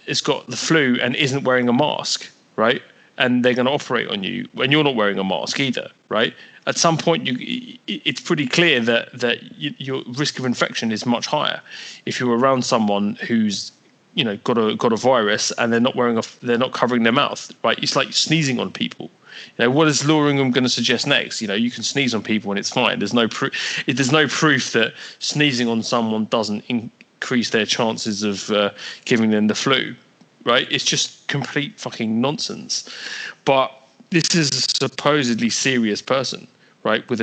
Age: 30-49